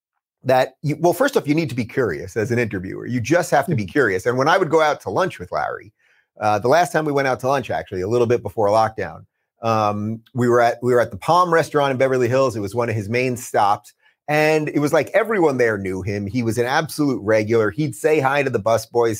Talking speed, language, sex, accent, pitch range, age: 260 wpm, English, male, American, 120-165 Hz, 30-49